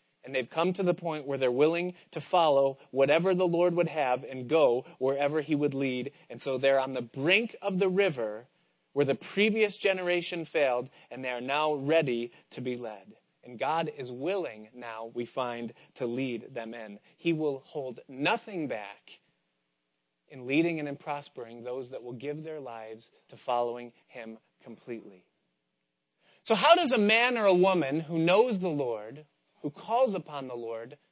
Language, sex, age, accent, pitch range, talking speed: English, male, 30-49, American, 125-175 Hz, 175 wpm